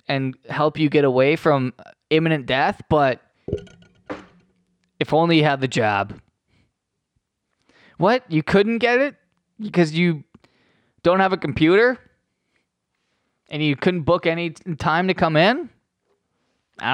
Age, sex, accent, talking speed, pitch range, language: 20-39, male, American, 130 wpm, 125-175 Hz, English